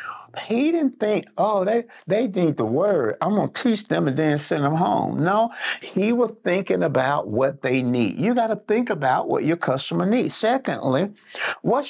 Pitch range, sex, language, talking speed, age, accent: 140-225 Hz, male, English, 190 wpm, 50-69, American